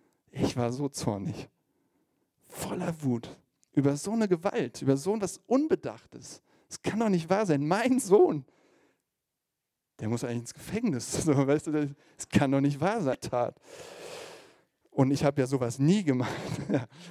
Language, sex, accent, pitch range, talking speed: German, male, German, 130-170 Hz, 160 wpm